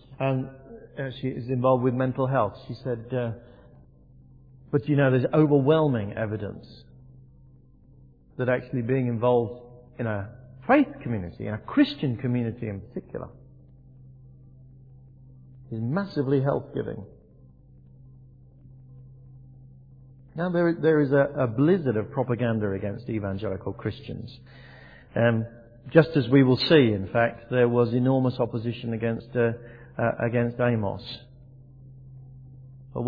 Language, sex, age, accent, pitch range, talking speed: English, male, 50-69, British, 120-135 Hz, 115 wpm